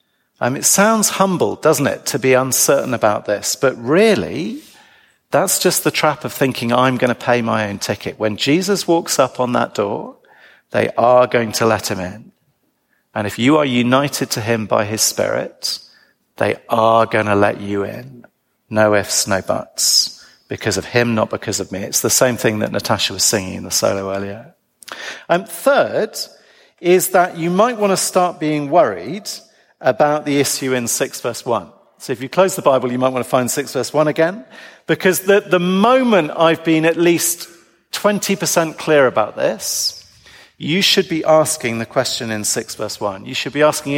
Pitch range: 125-180 Hz